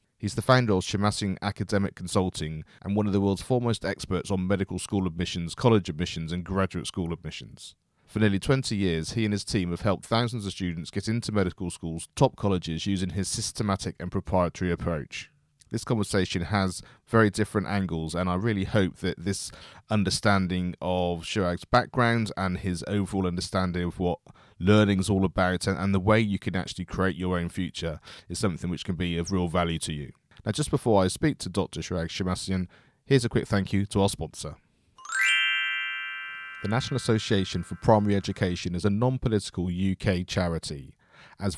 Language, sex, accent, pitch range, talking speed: English, male, British, 90-110 Hz, 180 wpm